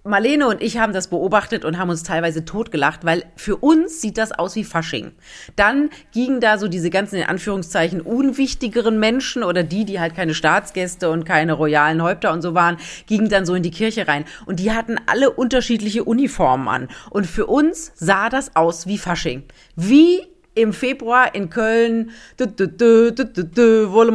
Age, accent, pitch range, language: 40-59, German, 175-240 Hz, German